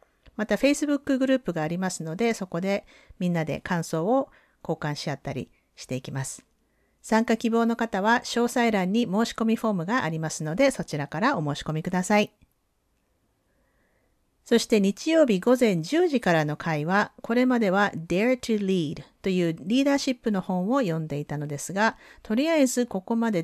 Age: 50-69